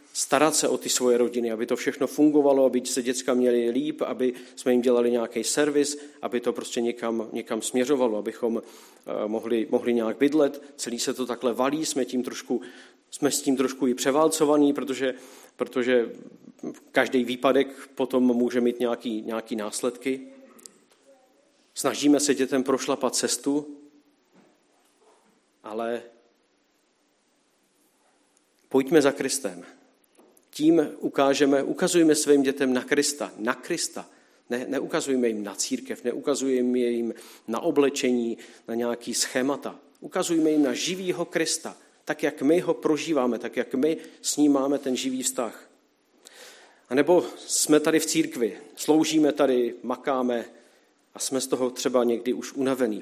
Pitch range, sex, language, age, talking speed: 120-145 Hz, male, Czech, 40-59, 140 wpm